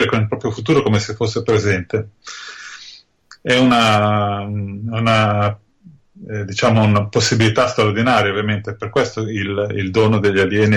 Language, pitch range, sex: Italian, 105-130 Hz, male